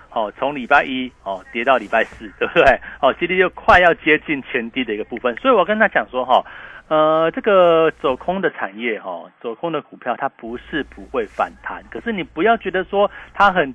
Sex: male